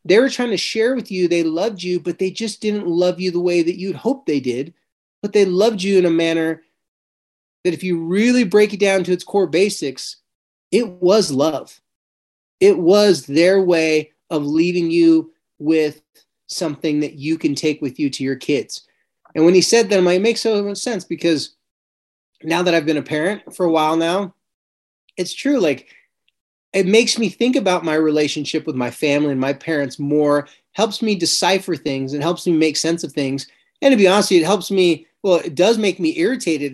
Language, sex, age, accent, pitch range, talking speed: English, male, 30-49, American, 155-205 Hz, 205 wpm